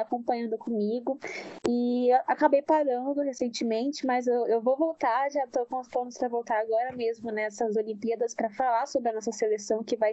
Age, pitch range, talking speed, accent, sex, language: 10-29, 235-280 Hz, 185 wpm, Brazilian, female, Portuguese